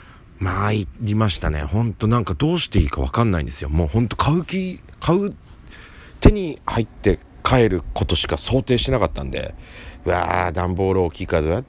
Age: 40-59